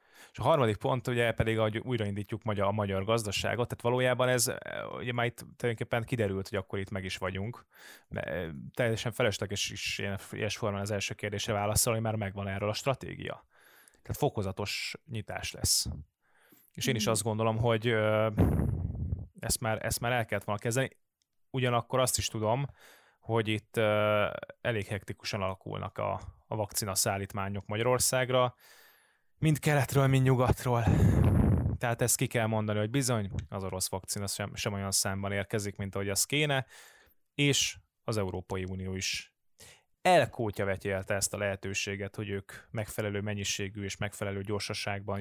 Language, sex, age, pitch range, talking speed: Hungarian, male, 20-39, 100-120 Hz, 150 wpm